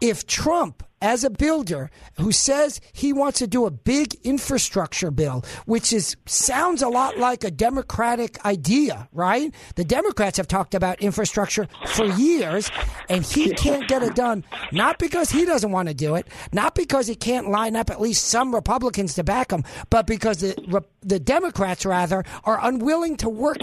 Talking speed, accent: 180 wpm, American